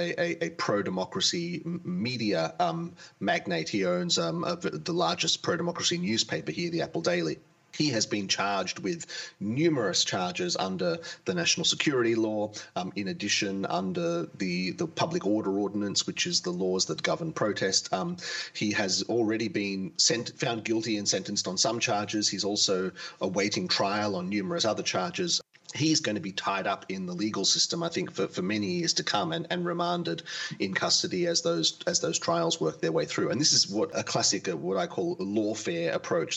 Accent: Australian